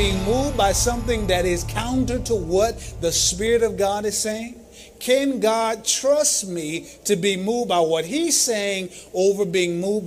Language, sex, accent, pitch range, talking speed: English, male, American, 175-235 Hz, 175 wpm